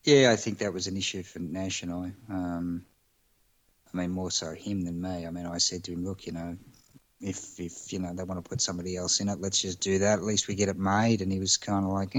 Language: English